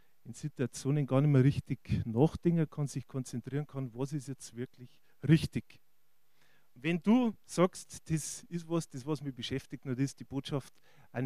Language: German